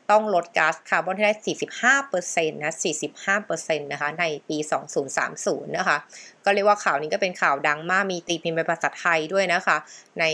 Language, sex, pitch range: Thai, female, 160-205 Hz